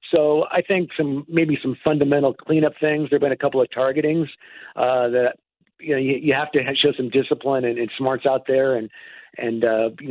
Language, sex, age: English, male, 50-69